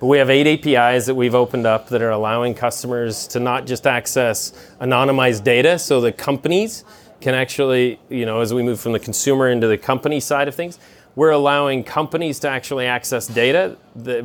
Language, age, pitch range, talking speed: English, 30-49, 120-150 Hz, 195 wpm